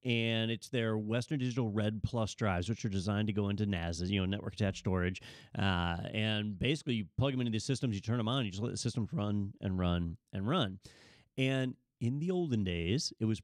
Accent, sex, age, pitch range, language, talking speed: American, male, 30-49, 105-140 Hz, English, 230 wpm